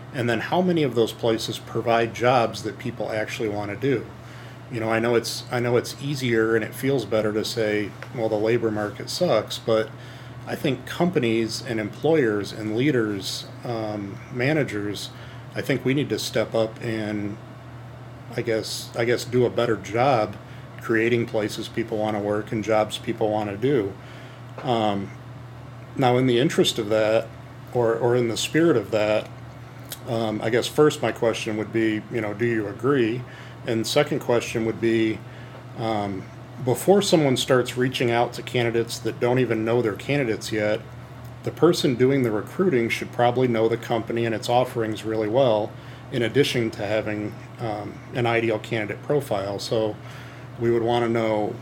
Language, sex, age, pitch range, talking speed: English, male, 40-59, 110-125 Hz, 175 wpm